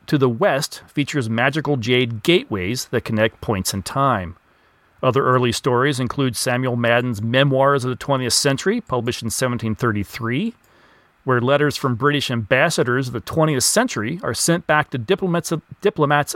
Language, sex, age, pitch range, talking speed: English, male, 40-59, 120-150 Hz, 155 wpm